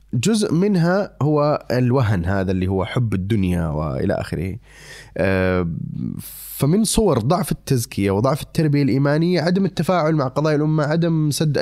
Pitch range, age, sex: 115-150 Hz, 20-39, male